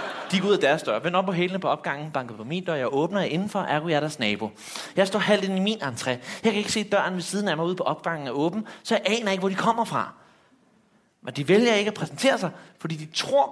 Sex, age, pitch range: male, 30-49, 170-245 Hz